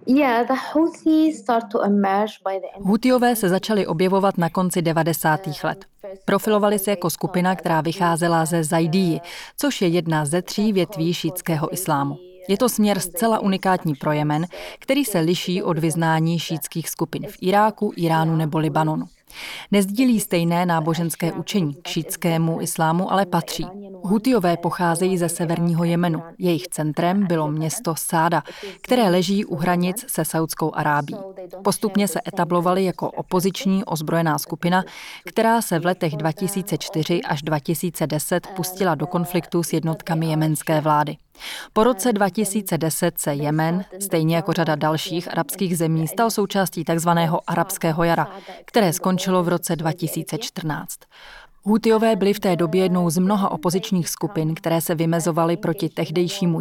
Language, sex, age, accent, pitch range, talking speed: Czech, female, 30-49, native, 165-195 Hz, 130 wpm